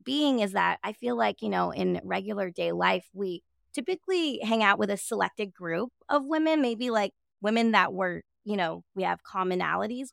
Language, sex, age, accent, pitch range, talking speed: English, female, 20-39, American, 195-240 Hz, 190 wpm